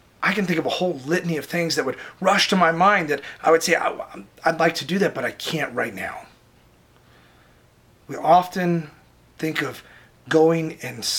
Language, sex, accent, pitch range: English, male, American, 135-180 Hz